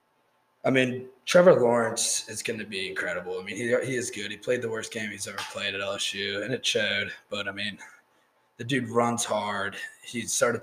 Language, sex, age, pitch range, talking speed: English, male, 20-39, 115-140 Hz, 210 wpm